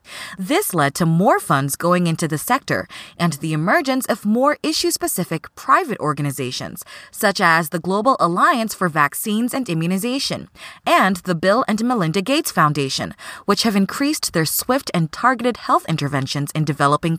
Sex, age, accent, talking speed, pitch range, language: female, 20-39, American, 155 wpm, 160-230 Hz, English